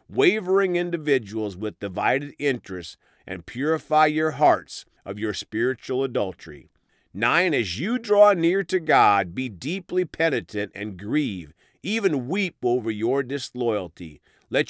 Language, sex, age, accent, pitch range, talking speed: English, male, 40-59, American, 95-160 Hz, 125 wpm